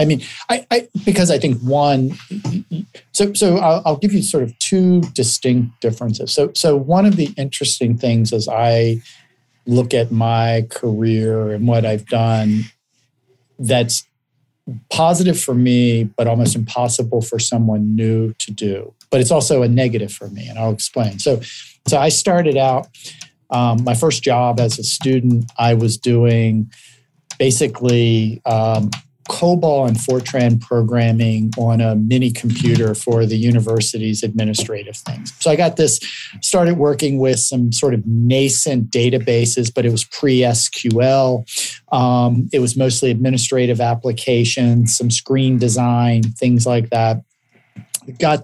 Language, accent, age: English, American, 50-69